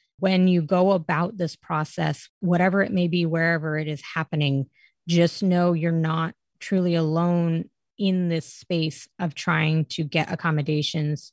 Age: 20-39